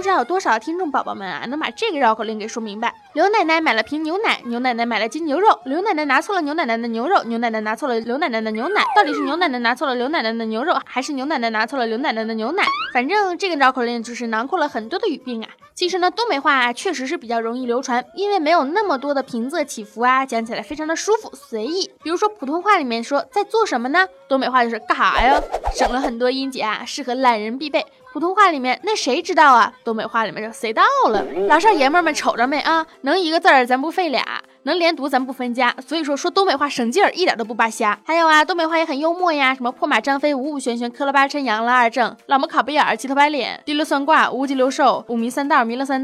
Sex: female